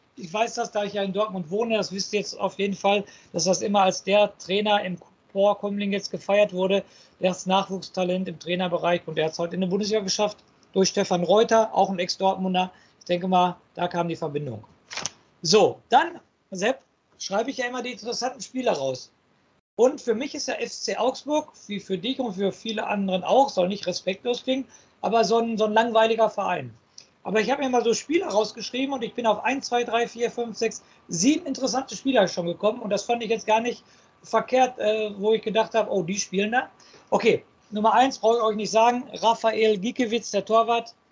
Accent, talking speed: German, 210 wpm